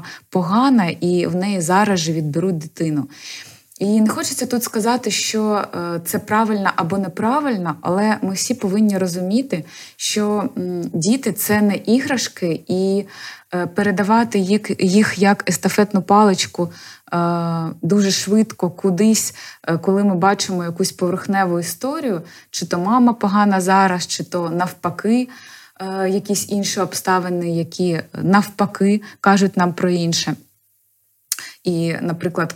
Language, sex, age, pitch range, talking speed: Ukrainian, female, 20-39, 165-195 Hz, 115 wpm